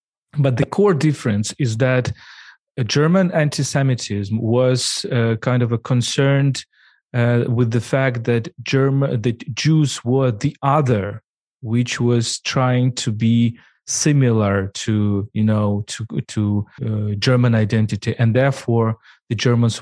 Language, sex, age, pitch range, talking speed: English, male, 40-59, 110-140 Hz, 135 wpm